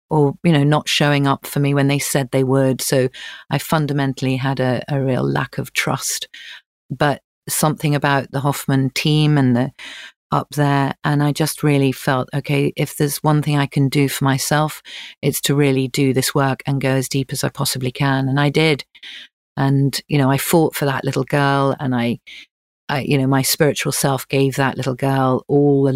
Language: English